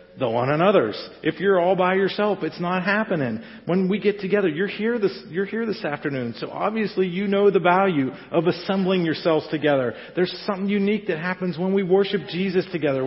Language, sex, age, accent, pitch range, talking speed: English, male, 40-59, American, 145-195 Hz, 195 wpm